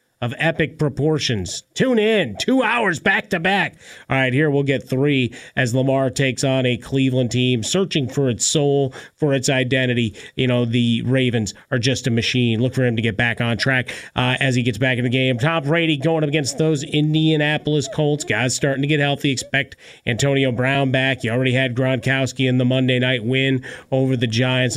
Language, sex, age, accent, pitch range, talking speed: English, male, 30-49, American, 125-155 Hz, 195 wpm